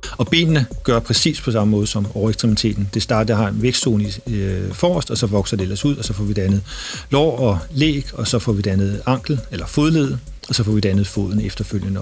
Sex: male